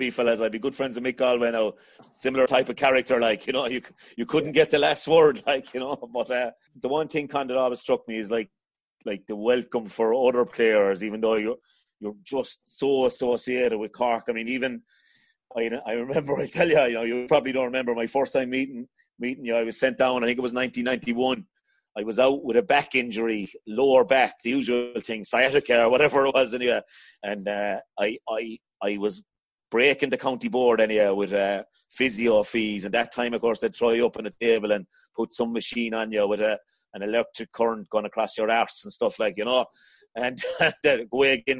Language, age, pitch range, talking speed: English, 30-49, 115-130 Hz, 220 wpm